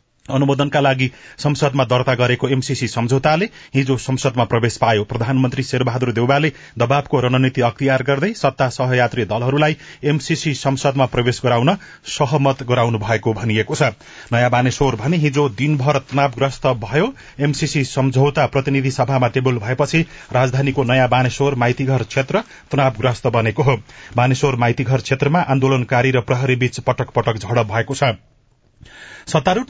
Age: 30-49